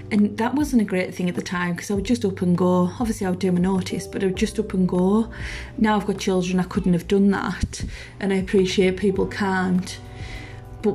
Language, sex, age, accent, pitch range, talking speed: English, female, 30-49, British, 185-220 Hz, 240 wpm